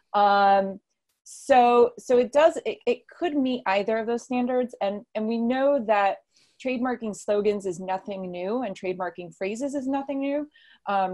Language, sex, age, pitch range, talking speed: English, female, 30-49, 185-240 Hz, 160 wpm